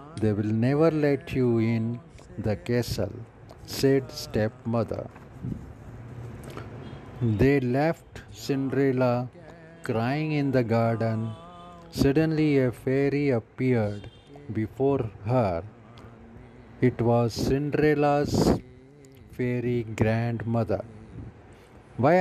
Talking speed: 80 wpm